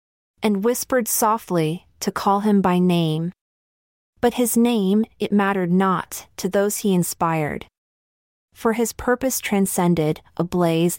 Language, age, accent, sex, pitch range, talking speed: English, 30-49, American, female, 170-230 Hz, 125 wpm